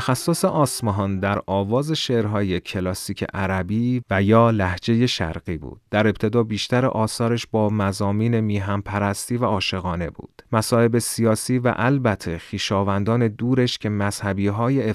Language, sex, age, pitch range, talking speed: Persian, male, 30-49, 95-120 Hz, 130 wpm